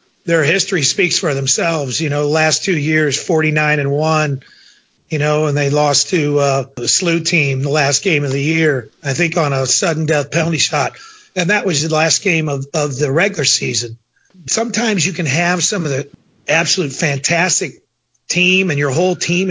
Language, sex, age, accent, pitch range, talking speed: English, male, 40-59, American, 150-190 Hz, 190 wpm